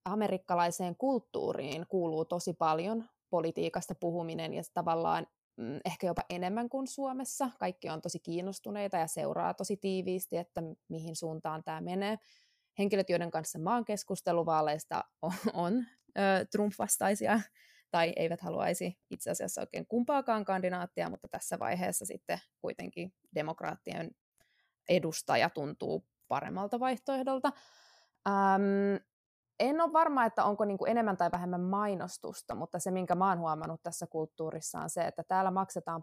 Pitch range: 165-200 Hz